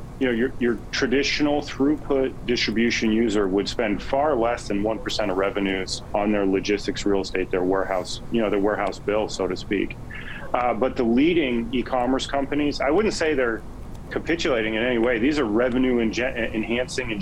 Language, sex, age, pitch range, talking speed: English, male, 40-59, 105-130 Hz, 175 wpm